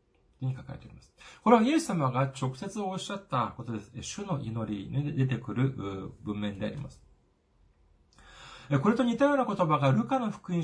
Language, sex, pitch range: Japanese, male, 125-190 Hz